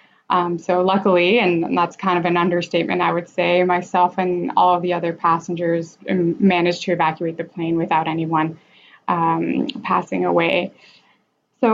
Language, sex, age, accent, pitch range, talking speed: English, female, 20-39, American, 165-185 Hz, 160 wpm